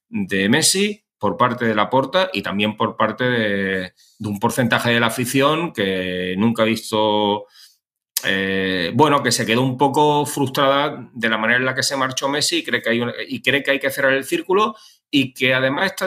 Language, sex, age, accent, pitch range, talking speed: Spanish, male, 30-49, Spanish, 110-135 Hz, 210 wpm